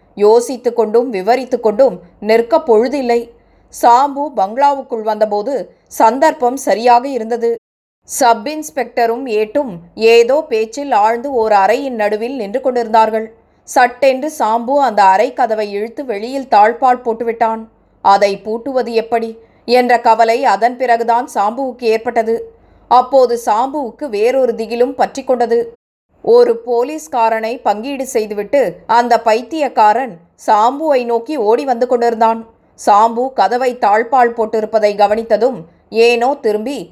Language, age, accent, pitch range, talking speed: Tamil, 20-39, native, 225-260 Hz, 100 wpm